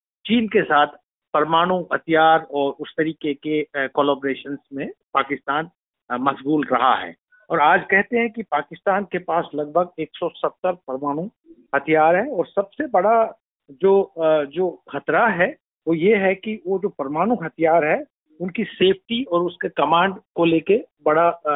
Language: Hindi